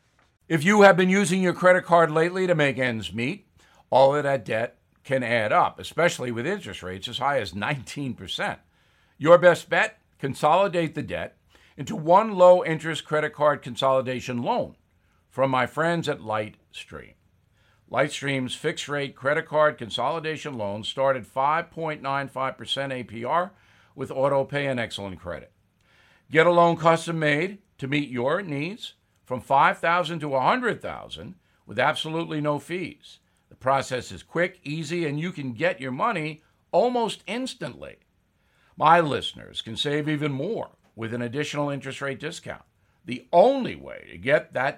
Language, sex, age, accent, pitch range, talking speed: English, male, 60-79, American, 125-165 Hz, 150 wpm